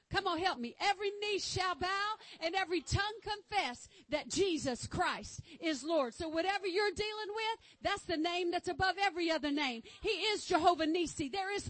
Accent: American